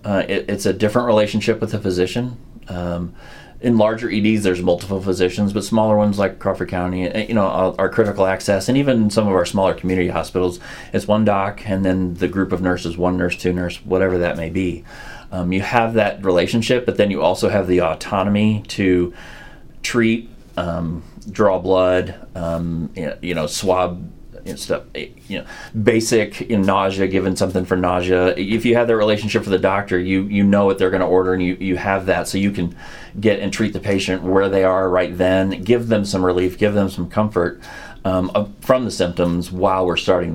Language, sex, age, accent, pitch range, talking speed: English, male, 30-49, American, 90-105 Hz, 200 wpm